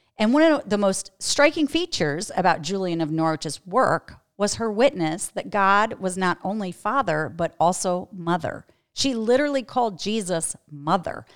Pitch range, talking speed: 160-225 Hz, 155 wpm